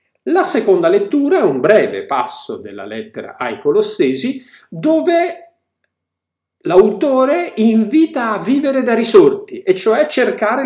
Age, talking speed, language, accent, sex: 50-69, 120 wpm, Italian, native, male